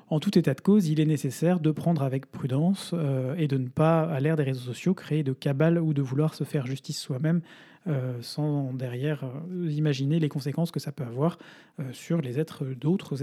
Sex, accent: male, French